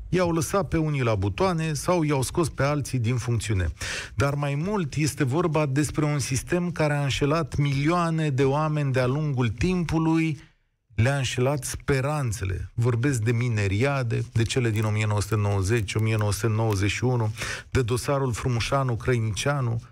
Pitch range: 115-155 Hz